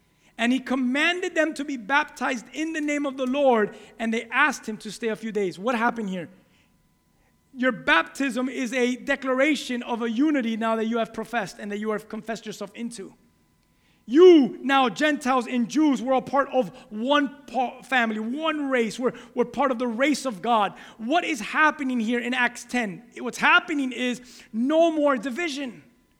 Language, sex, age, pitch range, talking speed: English, male, 30-49, 230-290 Hz, 185 wpm